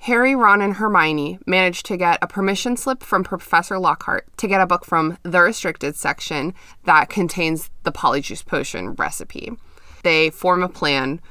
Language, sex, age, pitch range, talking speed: English, female, 20-39, 155-195 Hz, 165 wpm